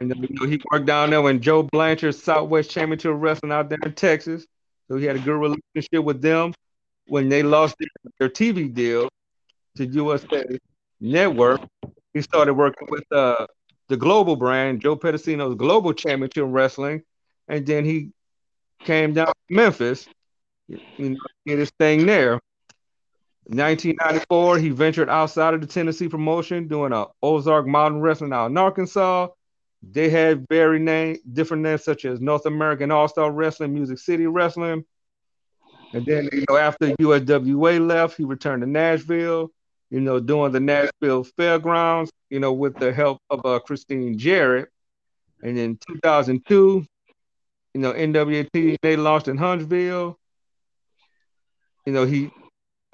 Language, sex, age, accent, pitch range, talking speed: English, male, 40-59, American, 140-160 Hz, 155 wpm